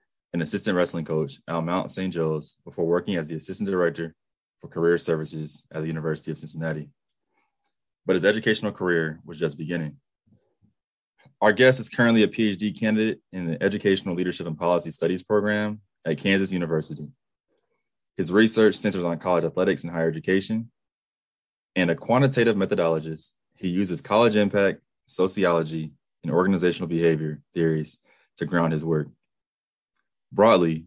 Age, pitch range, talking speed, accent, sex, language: 20-39, 80-105 Hz, 145 wpm, American, male, English